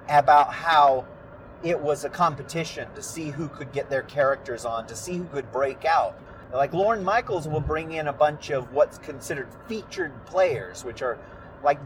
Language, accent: English, American